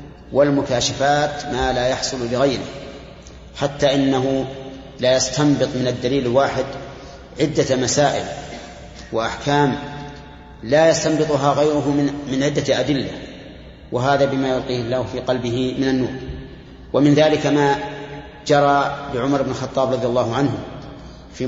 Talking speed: 110 wpm